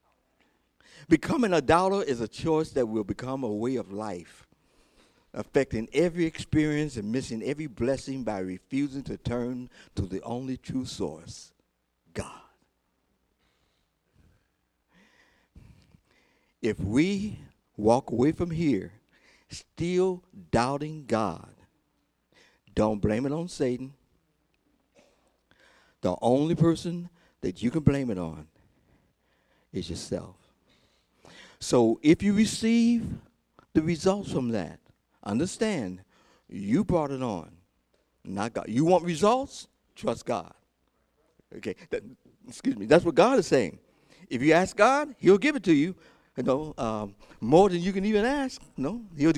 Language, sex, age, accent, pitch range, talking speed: English, male, 60-79, American, 120-195 Hz, 125 wpm